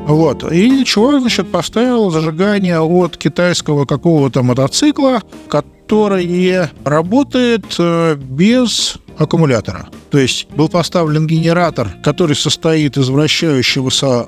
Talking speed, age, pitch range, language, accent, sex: 95 wpm, 50-69, 135-195 Hz, Russian, native, male